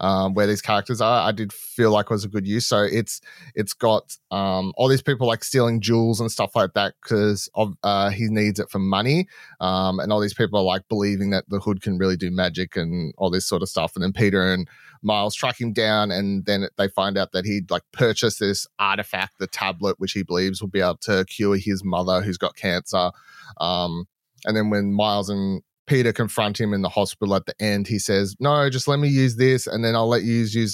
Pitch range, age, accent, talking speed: 95-110 Hz, 30-49, Australian, 235 wpm